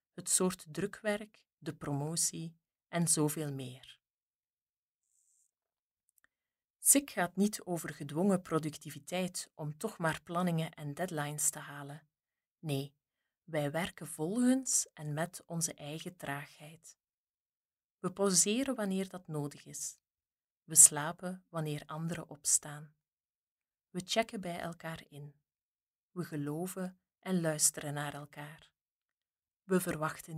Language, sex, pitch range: Dutch, female, 150-190 Hz